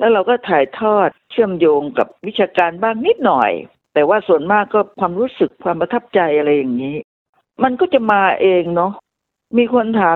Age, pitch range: 60-79, 175-235 Hz